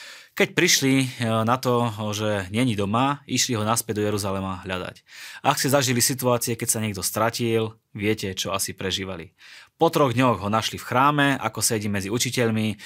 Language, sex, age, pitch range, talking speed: Slovak, male, 20-39, 105-130 Hz, 175 wpm